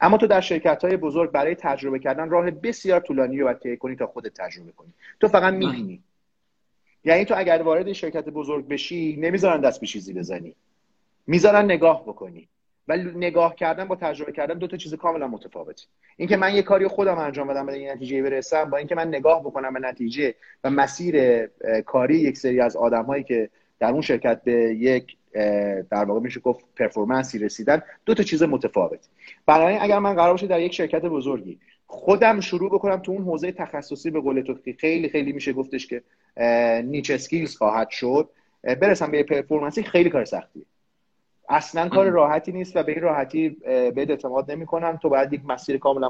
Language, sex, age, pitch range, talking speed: Persian, male, 30-49, 130-175 Hz, 175 wpm